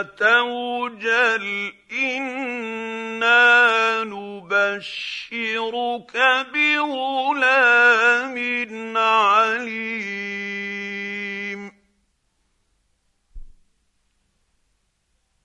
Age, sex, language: 50-69, male, Arabic